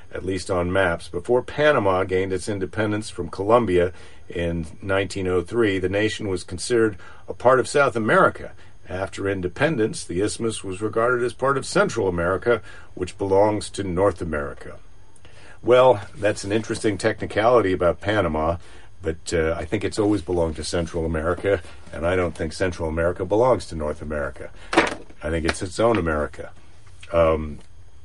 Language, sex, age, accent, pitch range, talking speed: English, male, 50-69, American, 85-100 Hz, 155 wpm